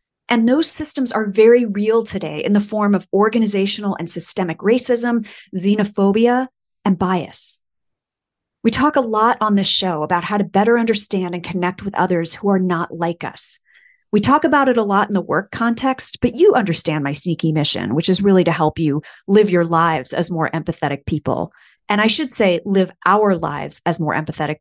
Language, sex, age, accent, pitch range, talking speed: English, female, 30-49, American, 180-230 Hz, 190 wpm